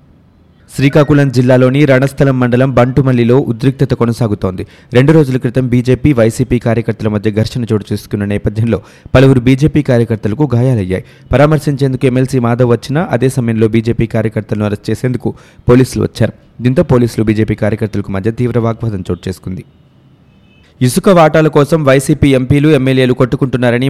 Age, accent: 30-49, native